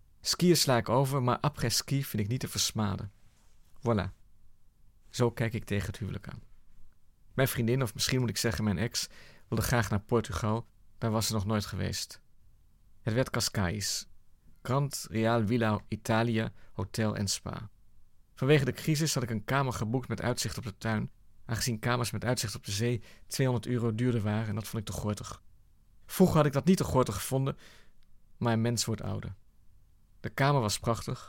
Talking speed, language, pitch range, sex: 180 wpm, Dutch, 105-130 Hz, male